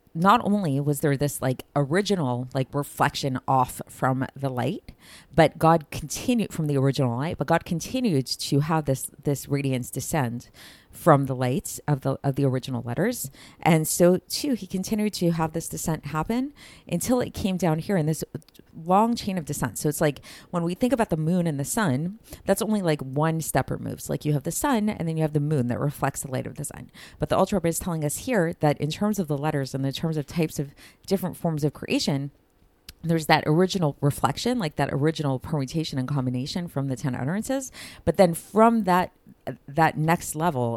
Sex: female